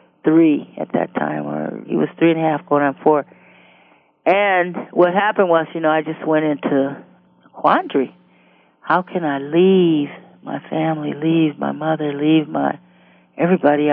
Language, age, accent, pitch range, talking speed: English, 40-59, American, 145-180 Hz, 165 wpm